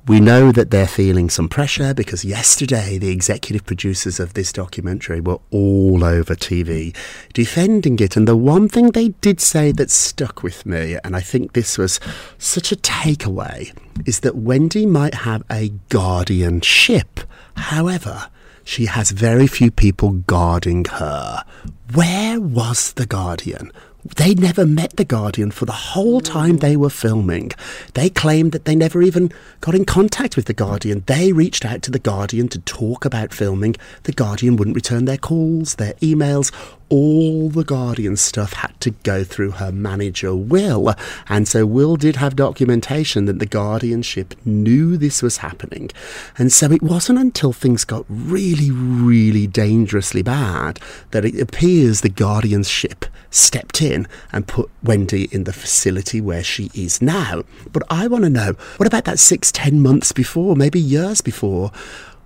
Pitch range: 100-150 Hz